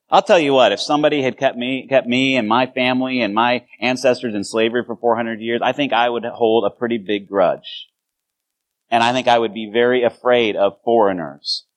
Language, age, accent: English, 30-49, American